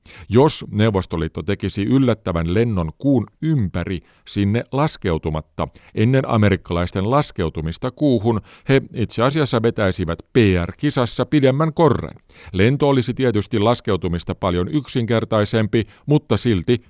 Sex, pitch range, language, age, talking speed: male, 90-125 Hz, Finnish, 50-69, 100 wpm